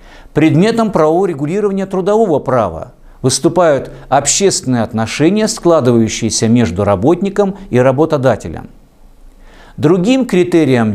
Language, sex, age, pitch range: Russian, male, 50-69, 120-180 Hz